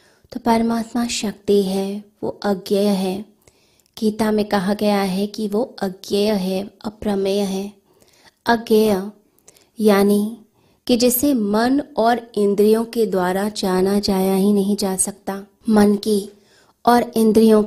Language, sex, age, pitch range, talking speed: Hindi, female, 20-39, 200-220 Hz, 125 wpm